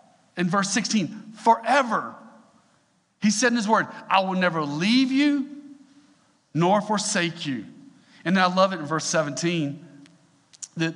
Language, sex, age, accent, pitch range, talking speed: English, male, 40-59, American, 155-225 Hz, 140 wpm